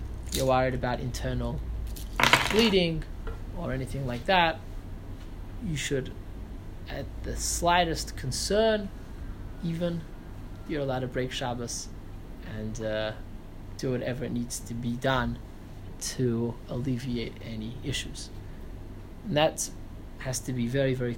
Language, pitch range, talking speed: English, 95-145 Hz, 115 wpm